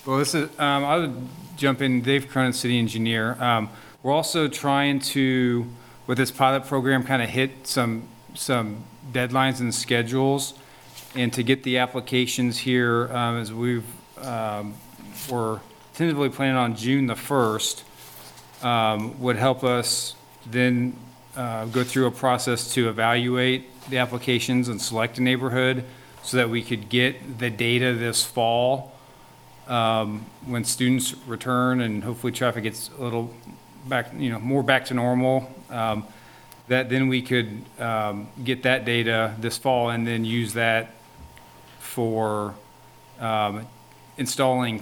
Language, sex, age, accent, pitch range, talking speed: English, male, 40-59, American, 115-130 Hz, 145 wpm